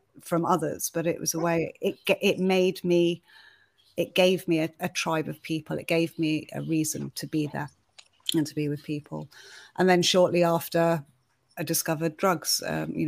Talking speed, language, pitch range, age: 190 wpm, English, 165-195 Hz, 30-49